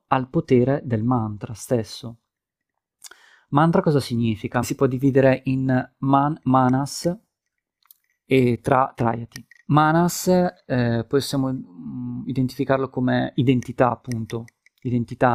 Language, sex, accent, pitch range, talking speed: Italian, male, native, 120-140 Hz, 100 wpm